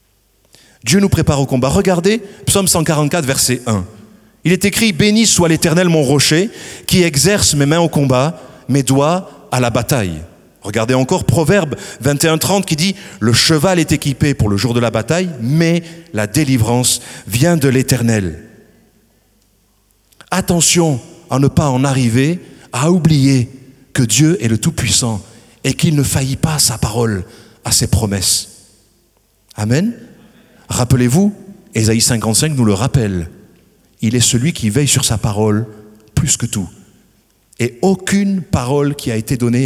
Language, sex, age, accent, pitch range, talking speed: French, male, 40-59, French, 110-165 Hz, 155 wpm